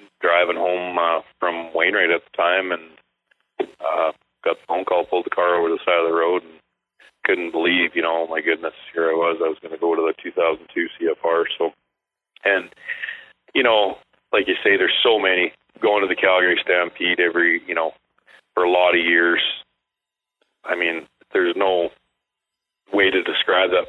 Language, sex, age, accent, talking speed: English, male, 40-59, American, 190 wpm